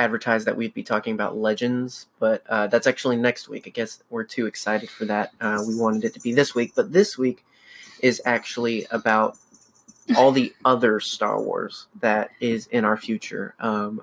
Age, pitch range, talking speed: 20-39, 115-130 Hz, 195 wpm